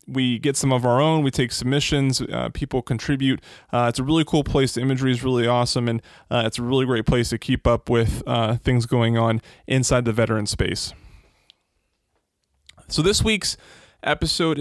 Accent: American